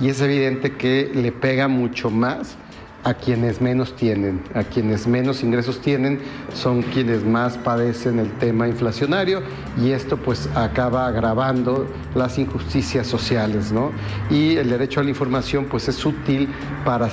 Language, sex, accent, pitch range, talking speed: Spanish, male, Mexican, 115-130 Hz, 150 wpm